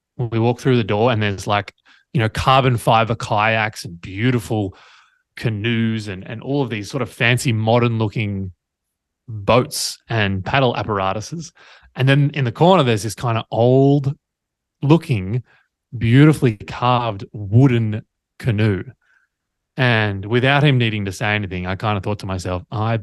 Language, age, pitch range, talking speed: English, 20-39, 100-125 Hz, 155 wpm